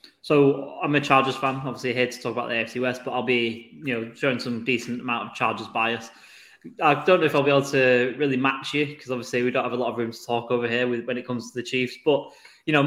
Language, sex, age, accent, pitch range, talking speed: English, male, 10-29, British, 115-130 Hz, 275 wpm